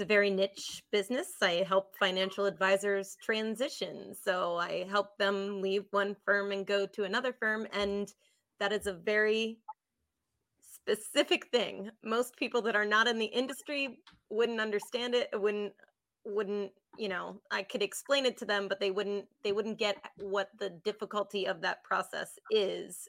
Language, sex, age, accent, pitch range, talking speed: English, female, 30-49, American, 195-215 Hz, 160 wpm